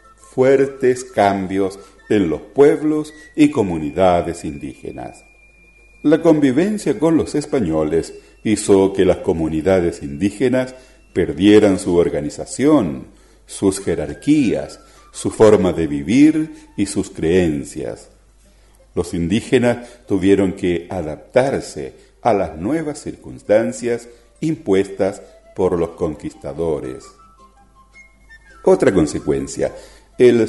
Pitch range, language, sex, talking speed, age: 95-150 Hz, Spanish, male, 90 wpm, 50-69